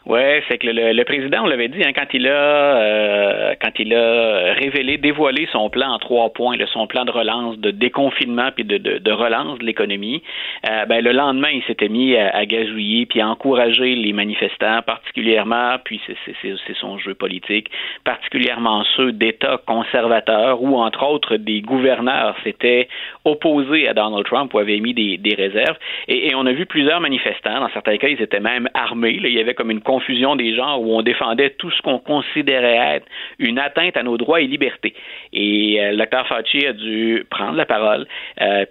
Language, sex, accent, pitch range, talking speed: French, male, Canadian, 105-135 Hz, 200 wpm